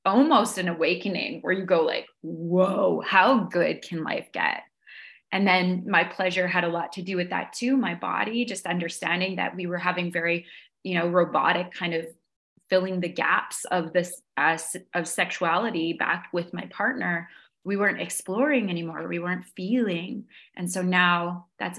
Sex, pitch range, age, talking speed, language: female, 175-200 Hz, 20-39, 170 wpm, English